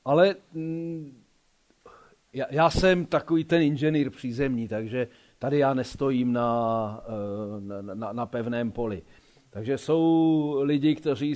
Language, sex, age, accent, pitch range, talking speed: Czech, male, 40-59, native, 110-145 Hz, 120 wpm